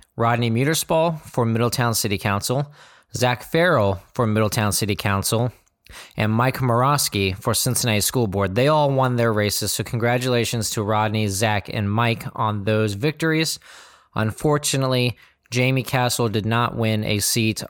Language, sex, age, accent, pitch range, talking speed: English, male, 20-39, American, 105-125 Hz, 140 wpm